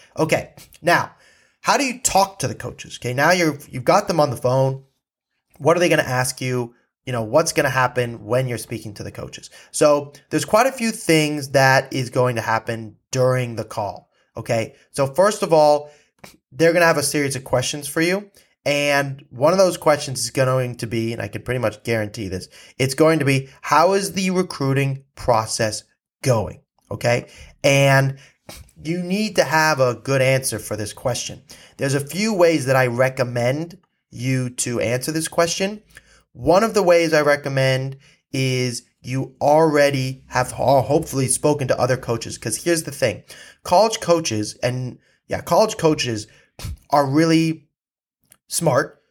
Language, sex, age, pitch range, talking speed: English, male, 20-39, 125-160 Hz, 175 wpm